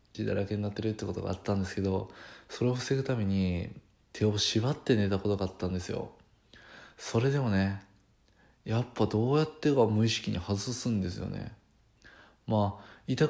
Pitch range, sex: 100-115 Hz, male